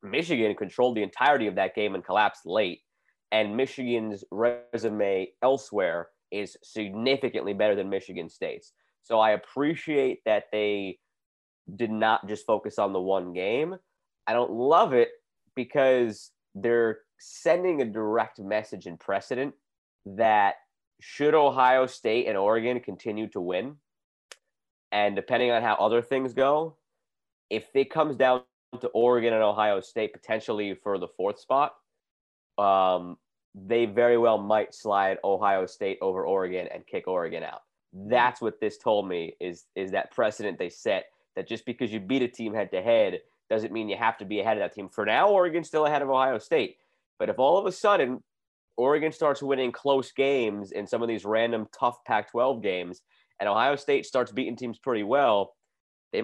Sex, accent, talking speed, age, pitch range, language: male, American, 170 wpm, 20-39, 105-140 Hz, English